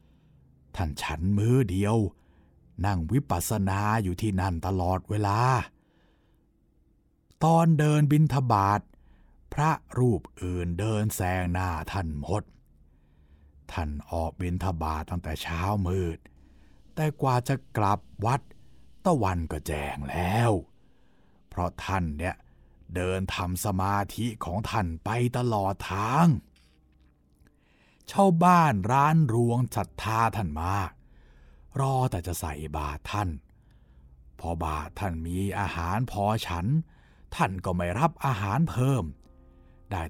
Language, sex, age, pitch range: Thai, male, 60-79, 75-105 Hz